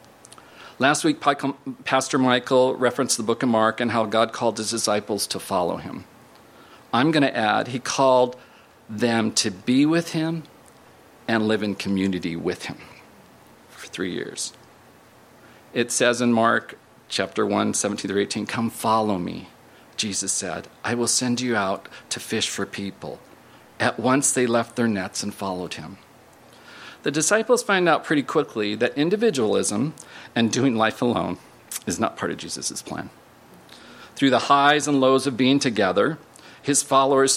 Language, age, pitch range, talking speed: English, 50-69, 110-135 Hz, 155 wpm